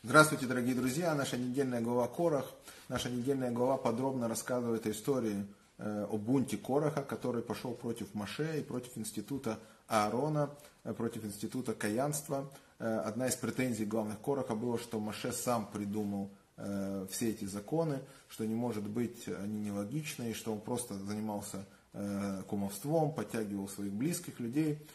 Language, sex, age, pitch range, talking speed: Russian, male, 30-49, 110-140 Hz, 145 wpm